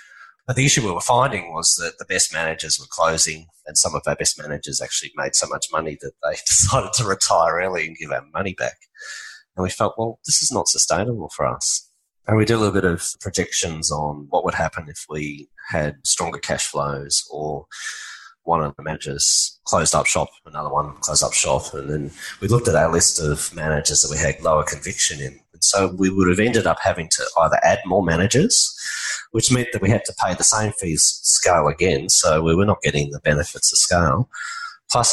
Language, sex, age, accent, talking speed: English, male, 30-49, Australian, 215 wpm